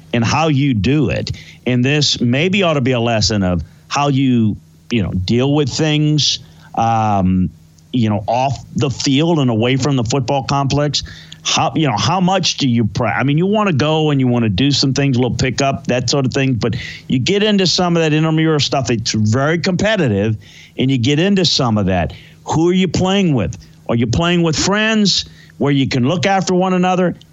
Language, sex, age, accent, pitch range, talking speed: English, male, 50-69, American, 120-160 Hz, 215 wpm